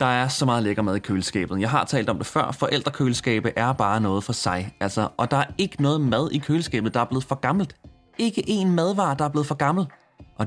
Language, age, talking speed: Danish, 20-39, 245 wpm